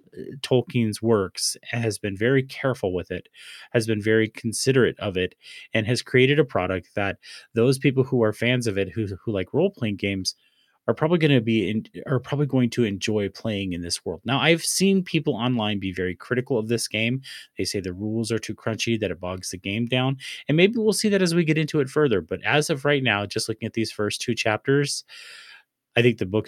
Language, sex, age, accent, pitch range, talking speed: English, male, 30-49, American, 105-135 Hz, 220 wpm